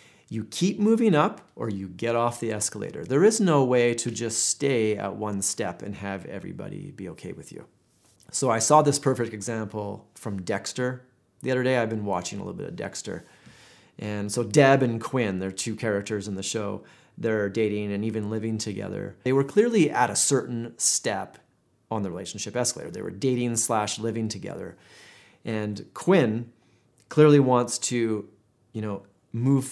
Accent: American